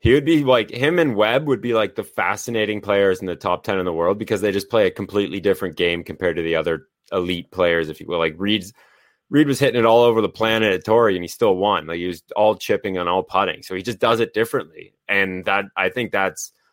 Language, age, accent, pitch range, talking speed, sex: English, 20-39, American, 90-110 Hz, 260 wpm, male